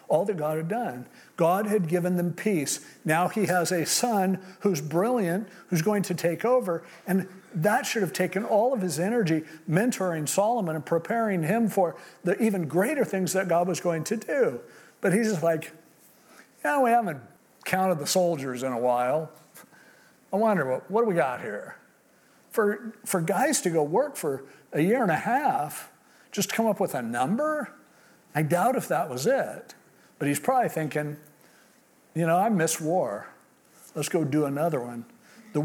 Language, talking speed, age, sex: English, 180 wpm, 50-69, male